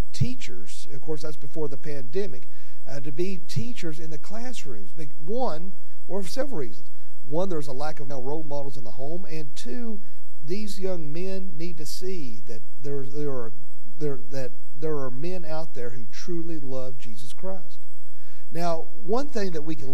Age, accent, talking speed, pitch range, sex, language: 50-69, American, 180 wpm, 125-175 Hz, male, English